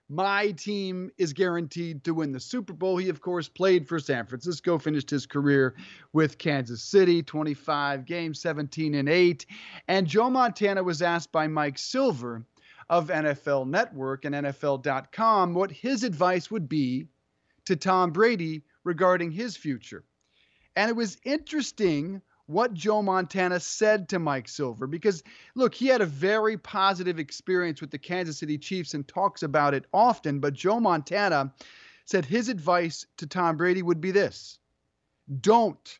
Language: English